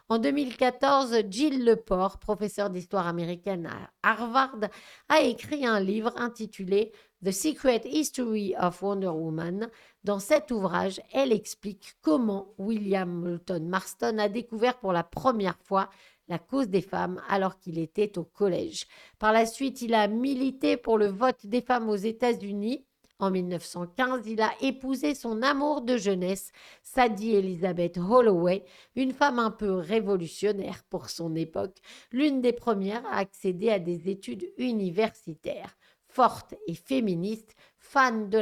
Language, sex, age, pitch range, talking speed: French, female, 50-69, 185-240 Hz, 145 wpm